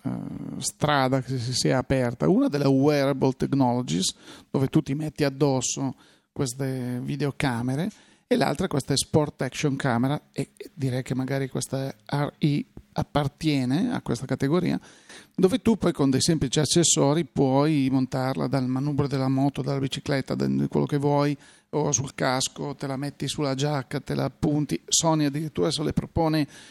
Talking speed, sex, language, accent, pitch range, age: 150 wpm, male, Italian, native, 130-150 Hz, 40-59